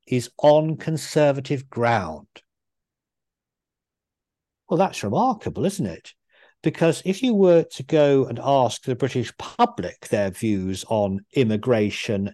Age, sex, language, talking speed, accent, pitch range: 50-69, male, English, 115 wpm, British, 110-155 Hz